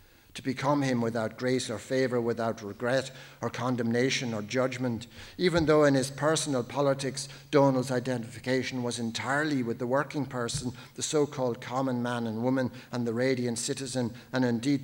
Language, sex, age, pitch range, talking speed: English, male, 60-79, 120-135 Hz, 160 wpm